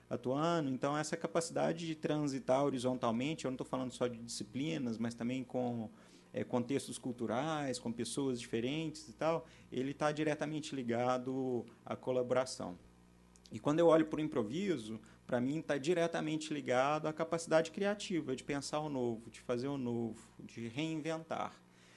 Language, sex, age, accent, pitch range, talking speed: Portuguese, male, 40-59, Brazilian, 120-155 Hz, 155 wpm